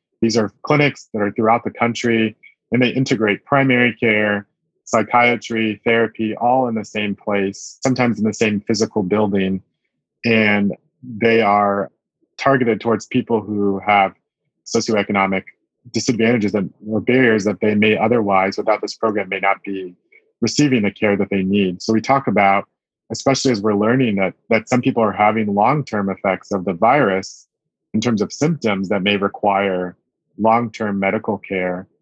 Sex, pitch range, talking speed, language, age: male, 100-115 Hz, 155 wpm, English, 30-49